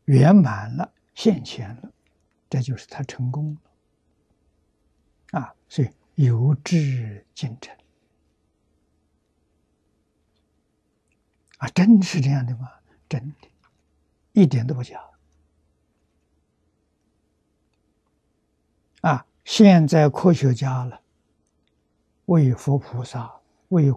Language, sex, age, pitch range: Chinese, male, 60-79, 105-150 Hz